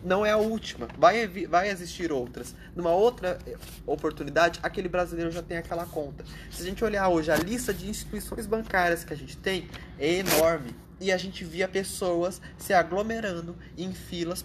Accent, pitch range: Brazilian, 150-190 Hz